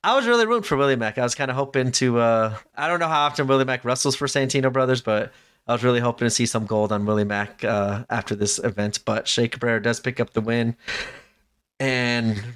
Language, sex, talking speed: English, male, 240 wpm